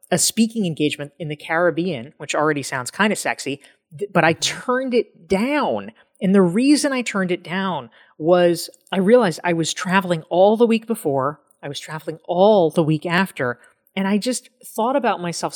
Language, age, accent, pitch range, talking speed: English, 30-49, American, 150-210 Hz, 180 wpm